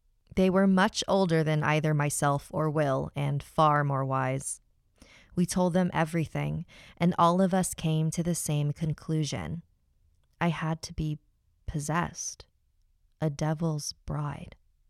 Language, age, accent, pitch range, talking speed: English, 20-39, American, 135-165 Hz, 135 wpm